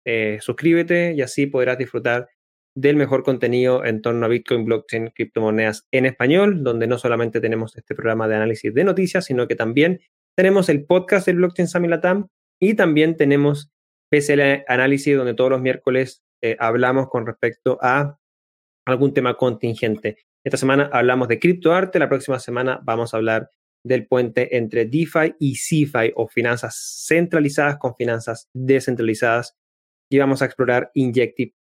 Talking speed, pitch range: 155 wpm, 115-150 Hz